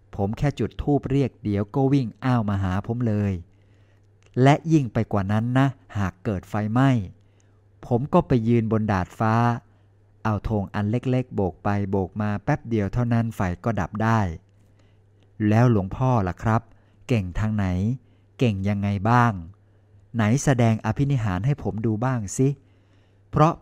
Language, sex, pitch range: Thai, male, 100-120 Hz